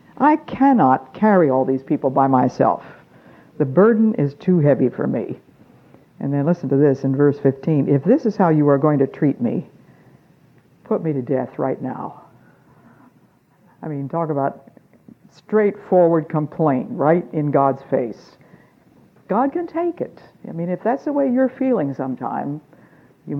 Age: 60-79